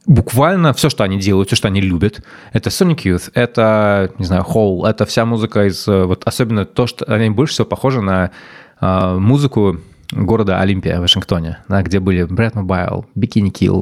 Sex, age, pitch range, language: male, 20-39, 95-120 Hz, Russian